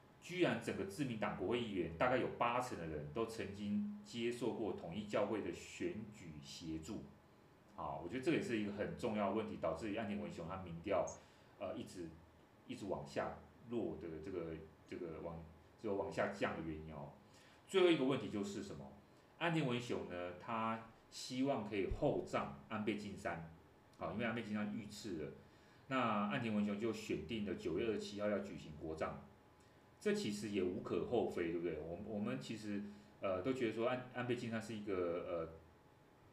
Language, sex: Chinese, male